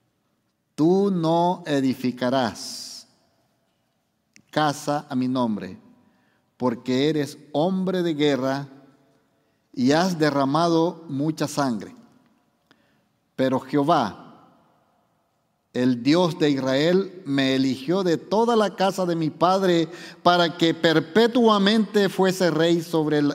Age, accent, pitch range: 50-69, Mexican, 140-175 Hz